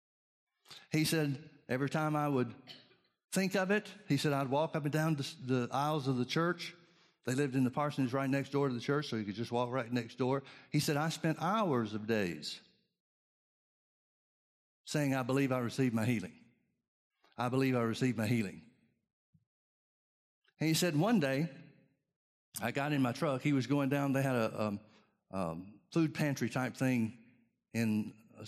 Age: 60-79